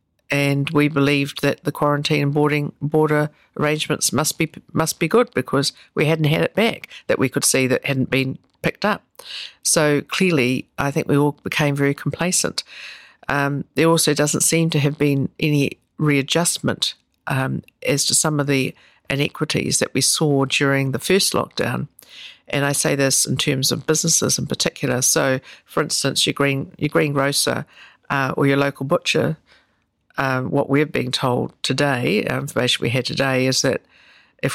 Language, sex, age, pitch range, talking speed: English, female, 50-69, 130-150 Hz, 170 wpm